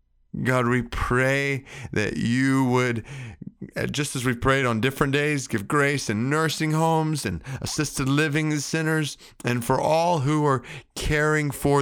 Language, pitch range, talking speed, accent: English, 120-145 Hz, 145 wpm, American